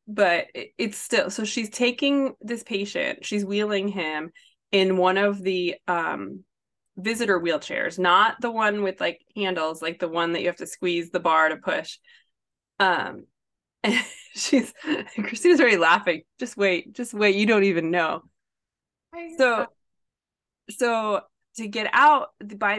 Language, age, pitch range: English, 20-39, 195-250 Hz